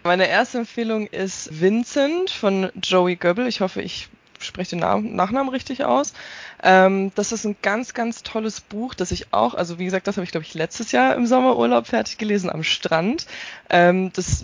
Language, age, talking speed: German, 20-39, 180 wpm